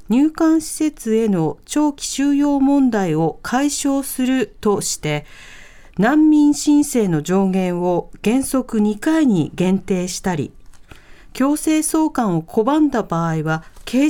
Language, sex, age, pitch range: Japanese, female, 50-69, 190-260 Hz